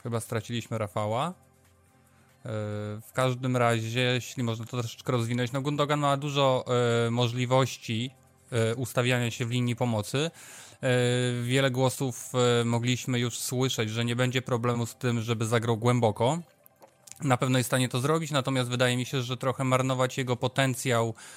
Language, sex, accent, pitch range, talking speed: Polish, male, native, 115-130 Hz, 145 wpm